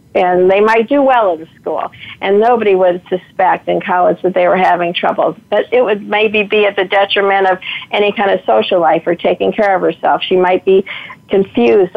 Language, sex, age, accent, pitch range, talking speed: English, female, 50-69, American, 185-210 Hz, 205 wpm